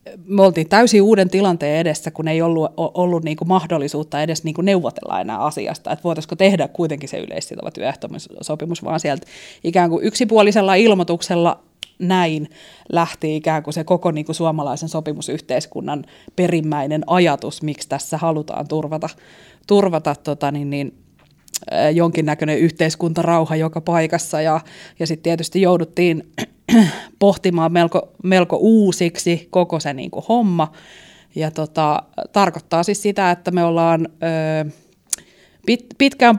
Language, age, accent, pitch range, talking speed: Finnish, 20-39, native, 155-185 Hz, 130 wpm